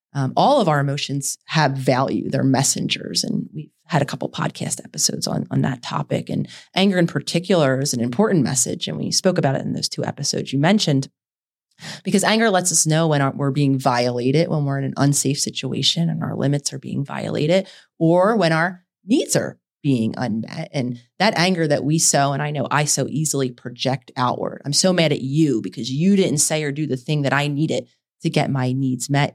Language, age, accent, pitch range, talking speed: English, 30-49, American, 140-180 Hz, 210 wpm